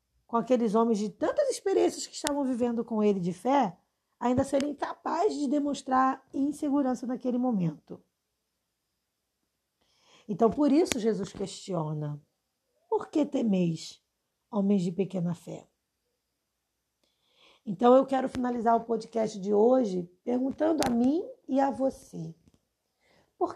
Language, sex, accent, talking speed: Portuguese, female, Brazilian, 120 wpm